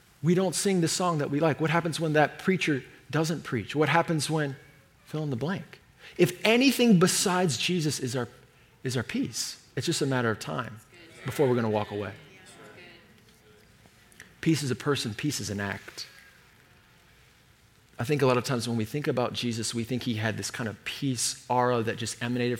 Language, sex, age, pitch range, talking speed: English, male, 30-49, 120-180 Hz, 195 wpm